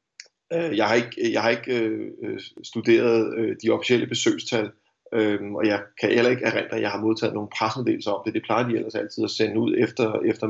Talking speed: 210 wpm